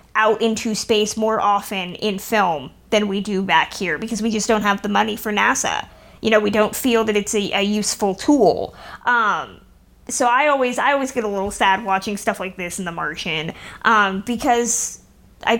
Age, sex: 20-39, female